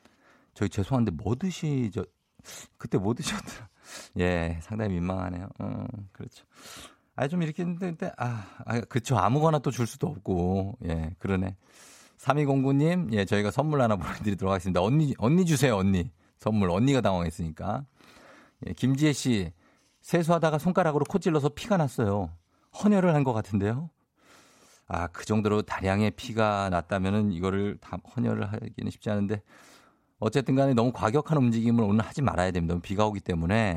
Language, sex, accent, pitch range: Korean, male, native, 95-130 Hz